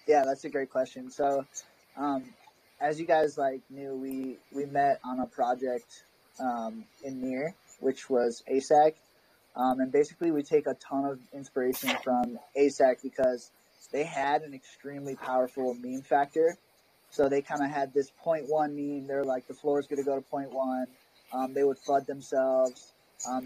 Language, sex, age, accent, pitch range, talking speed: Russian, male, 20-39, American, 130-145 Hz, 175 wpm